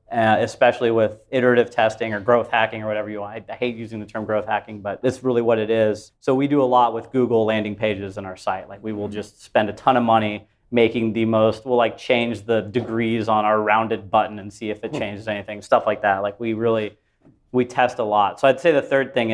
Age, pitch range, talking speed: 30-49, 105-120 Hz, 250 wpm